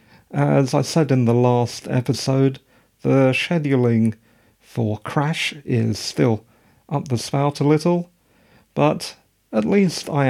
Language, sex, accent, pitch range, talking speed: English, male, British, 110-145 Hz, 130 wpm